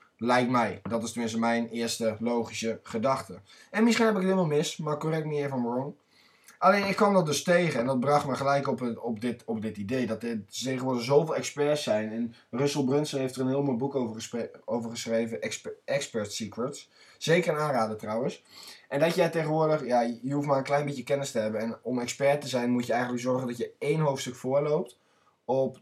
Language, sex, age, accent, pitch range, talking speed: Dutch, male, 20-39, Dutch, 115-140 Hz, 220 wpm